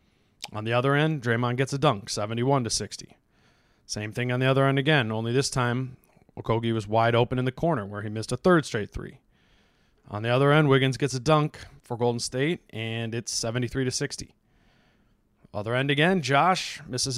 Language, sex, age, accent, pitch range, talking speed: English, male, 20-39, American, 115-140 Hz, 190 wpm